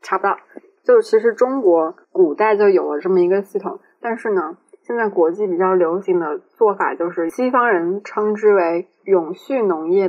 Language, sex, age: Chinese, female, 20-39